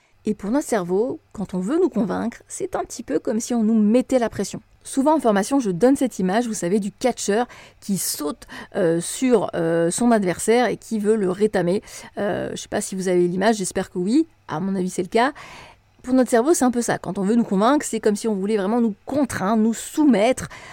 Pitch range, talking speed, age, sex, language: 195-245 Hz, 240 wpm, 30-49, female, French